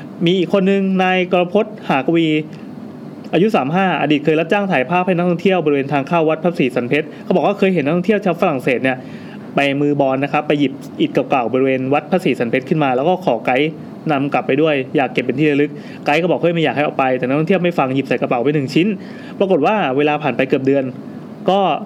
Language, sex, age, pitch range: English, male, 20-39, 140-185 Hz